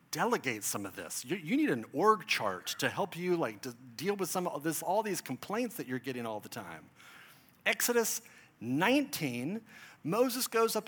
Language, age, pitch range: English, 40-59, 175-250 Hz